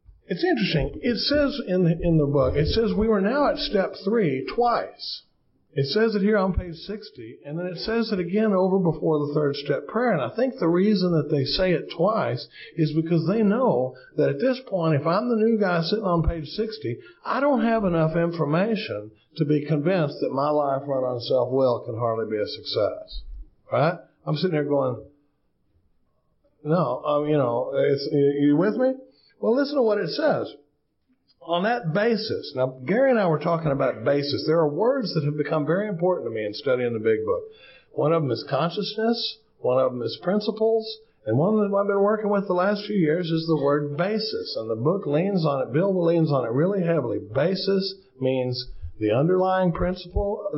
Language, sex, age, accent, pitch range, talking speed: English, male, 50-69, American, 145-215 Hz, 200 wpm